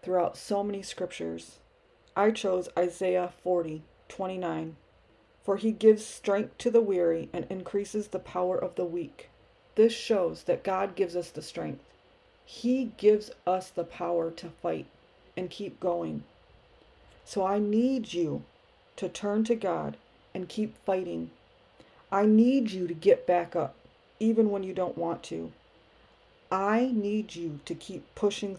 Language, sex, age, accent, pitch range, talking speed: English, female, 40-59, American, 175-210 Hz, 150 wpm